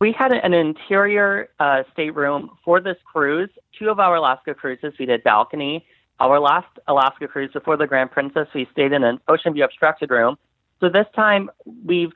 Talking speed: 185 wpm